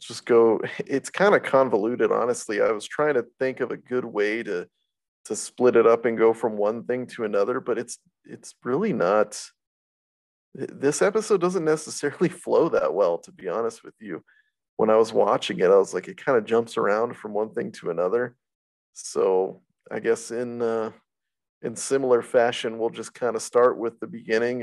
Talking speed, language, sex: 190 wpm, English, male